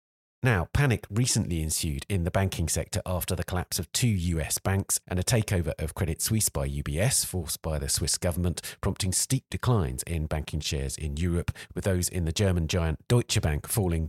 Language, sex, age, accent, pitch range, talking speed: English, male, 40-59, British, 80-110 Hz, 190 wpm